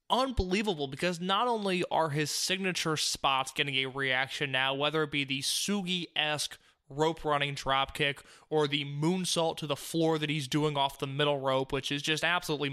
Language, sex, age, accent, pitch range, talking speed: English, male, 20-39, American, 140-175 Hz, 170 wpm